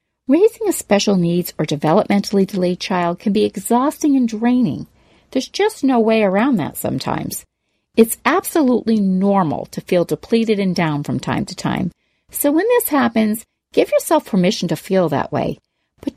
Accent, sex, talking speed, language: American, female, 165 wpm, English